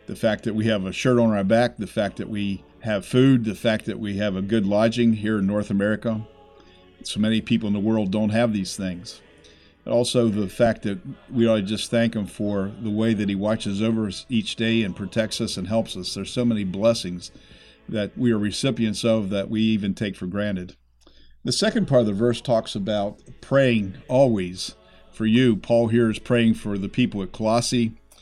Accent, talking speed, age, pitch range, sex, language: American, 215 wpm, 50-69, 100-115 Hz, male, English